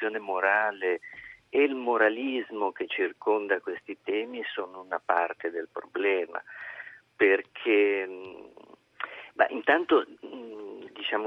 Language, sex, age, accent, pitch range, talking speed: Italian, male, 50-69, native, 335-425 Hz, 85 wpm